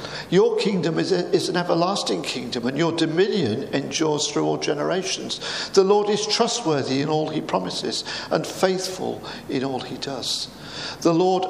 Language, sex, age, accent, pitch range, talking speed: English, male, 50-69, British, 145-200 Hz, 150 wpm